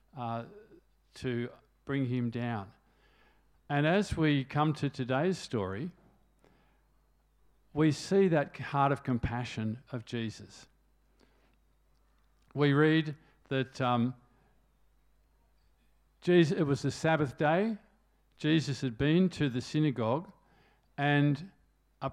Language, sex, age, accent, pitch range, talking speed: English, male, 50-69, Australian, 120-155 Hz, 105 wpm